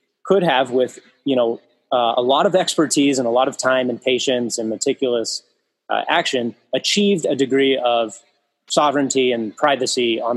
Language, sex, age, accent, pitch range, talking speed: English, male, 30-49, American, 115-140 Hz, 170 wpm